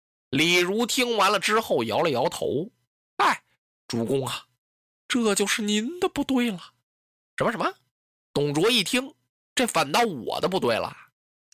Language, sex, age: Chinese, male, 20-39